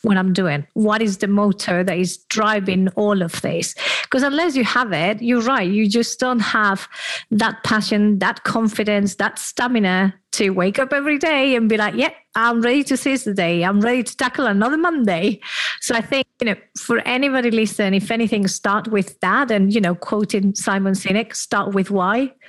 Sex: female